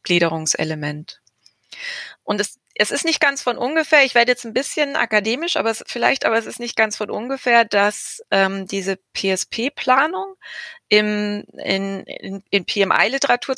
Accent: German